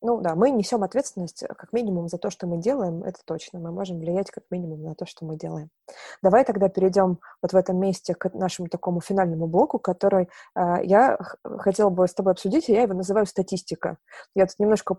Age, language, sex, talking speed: 20-39, Russian, female, 210 wpm